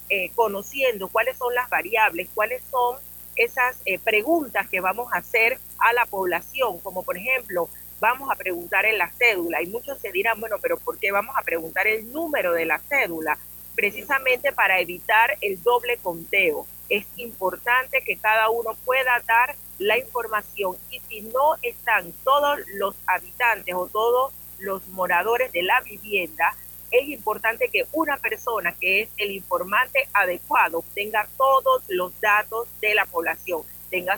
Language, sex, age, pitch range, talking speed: Spanish, female, 40-59, 185-270 Hz, 160 wpm